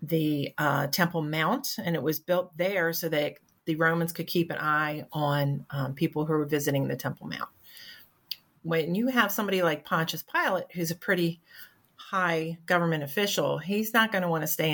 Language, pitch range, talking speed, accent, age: English, 150-180 Hz, 185 wpm, American, 40-59